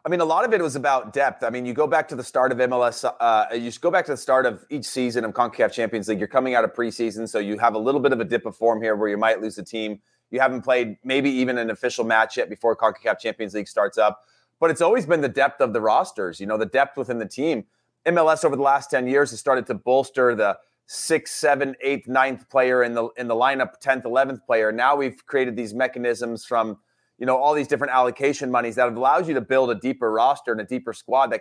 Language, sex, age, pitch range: English, male, 30-49, 115-135 Hz